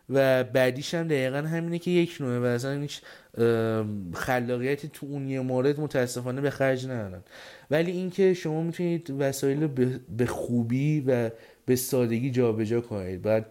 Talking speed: 150 wpm